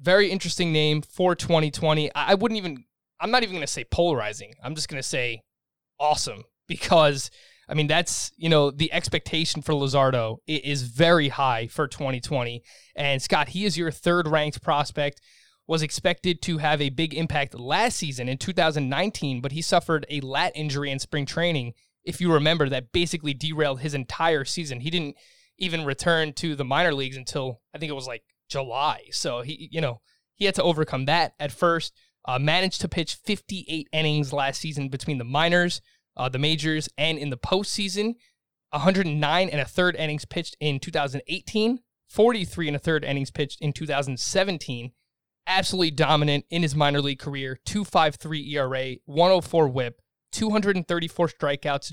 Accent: American